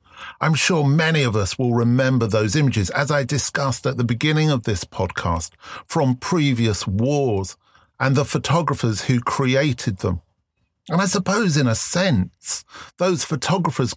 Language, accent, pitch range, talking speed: English, British, 105-150 Hz, 150 wpm